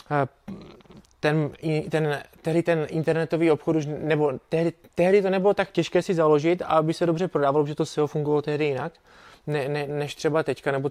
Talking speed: 180 wpm